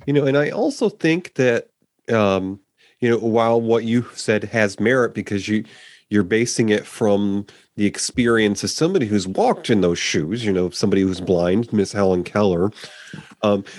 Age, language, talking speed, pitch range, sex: 30-49, English, 180 wpm, 100-125 Hz, male